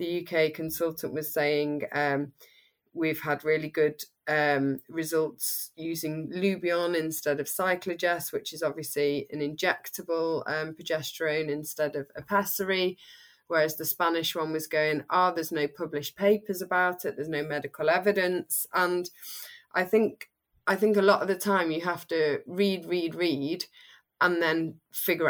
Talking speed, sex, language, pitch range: 150 wpm, female, English, 155-180 Hz